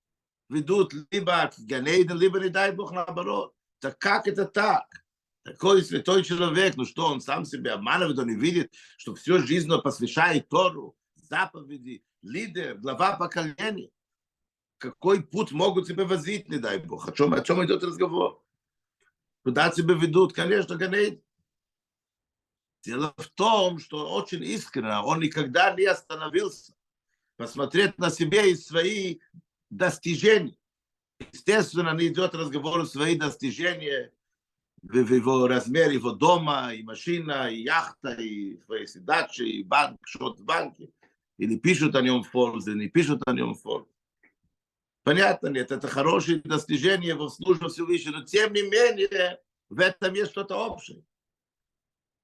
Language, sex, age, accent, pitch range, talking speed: Russian, male, 50-69, Croatian, 150-195 Hz, 140 wpm